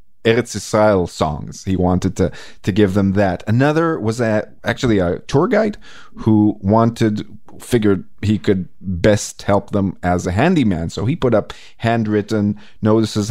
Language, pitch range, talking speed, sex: English, 90-115 Hz, 155 wpm, male